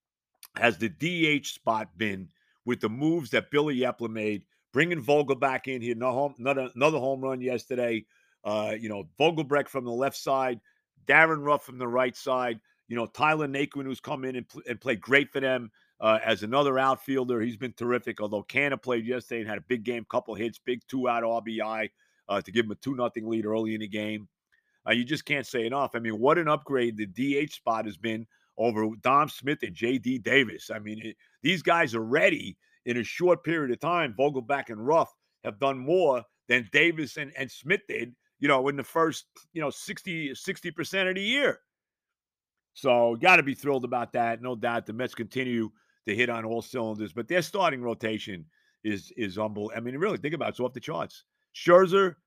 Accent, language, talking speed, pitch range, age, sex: American, English, 210 wpm, 115-145 Hz, 50-69, male